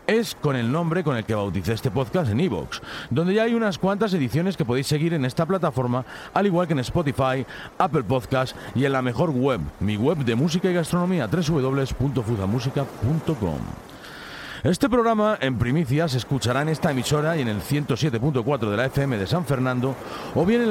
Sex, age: male, 40-59